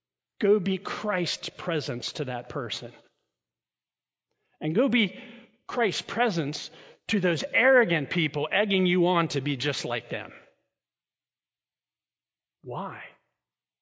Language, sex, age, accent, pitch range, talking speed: English, male, 50-69, American, 130-180 Hz, 110 wpm